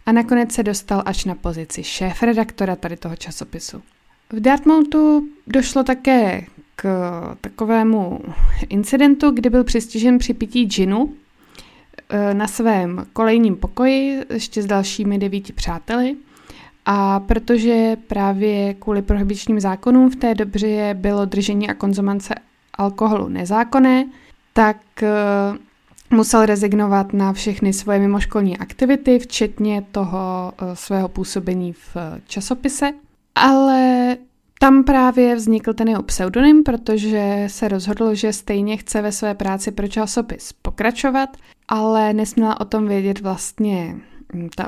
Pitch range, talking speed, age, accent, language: 195-245 Hz, 120 wpm, 20-39, native, Czech